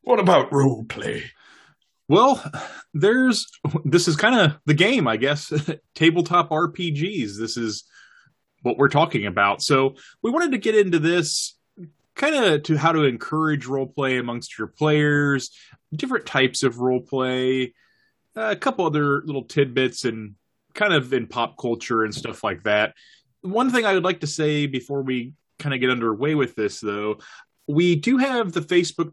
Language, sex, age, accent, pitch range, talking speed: English, male, 20-39, American, 125-160 Hz, 165 wpm